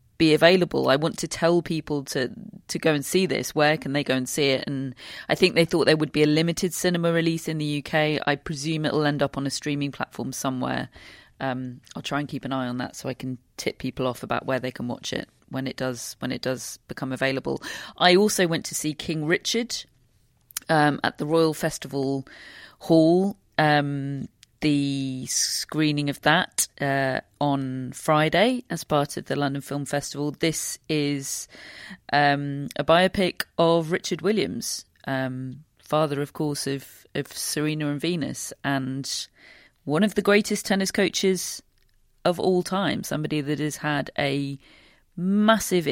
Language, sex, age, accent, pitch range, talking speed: English, female, 40-59, British, 135-165 Hz, 175 wpm